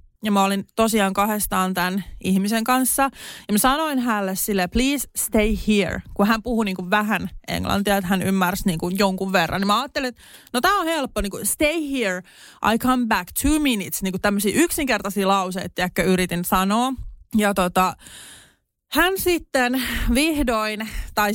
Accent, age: native, 20-39